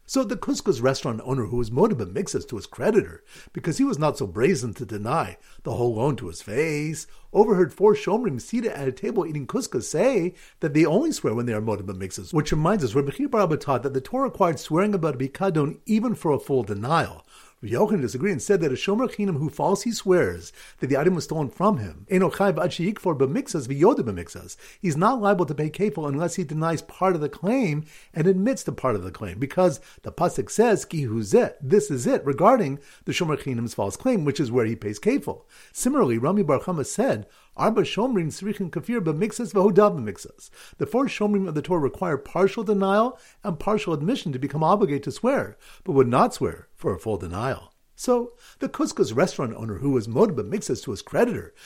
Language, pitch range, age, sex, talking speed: English, 140-205 Hz, 50-69, male, 200 wpm